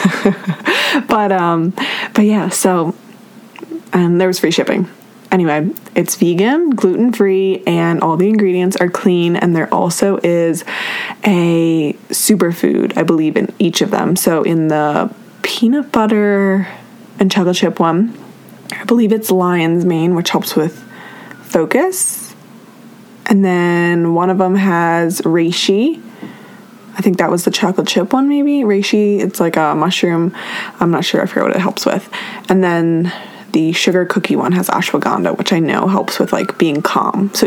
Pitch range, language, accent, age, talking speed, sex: 175-215 Hz, English, American, 20-39, 155 wpm, female